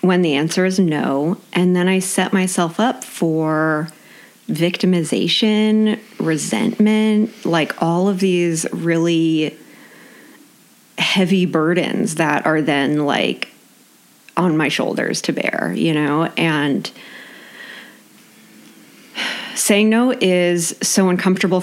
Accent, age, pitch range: American, 30-49, 160-220 Hz